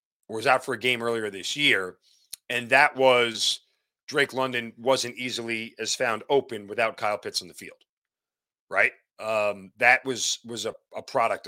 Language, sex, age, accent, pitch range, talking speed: English, male, 40-59, American, 115-155 Hz, 165 wpm